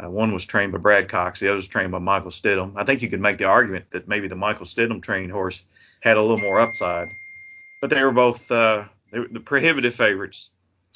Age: 30-49